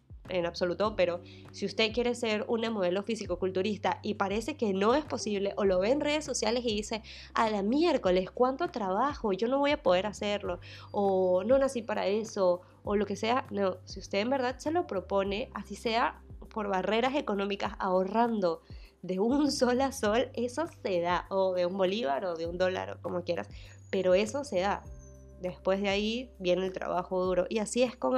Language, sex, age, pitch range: Spanish, female, 20-39, 175-225 Hz